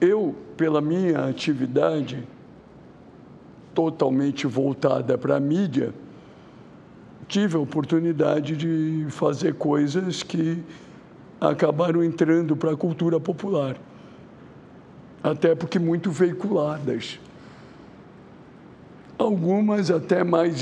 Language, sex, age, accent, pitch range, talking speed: English, male, 60-79, Brazilian, 150-175 Hz, 85 wpm